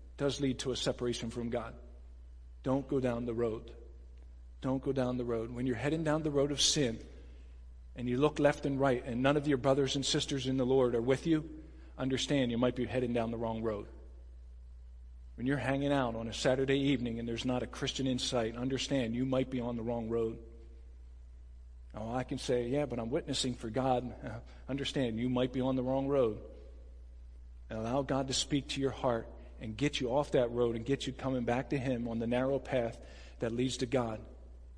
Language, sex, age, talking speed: English, male, 40-59, 210 wpm